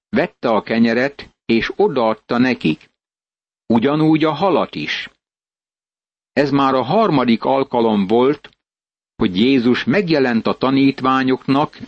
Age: 60-79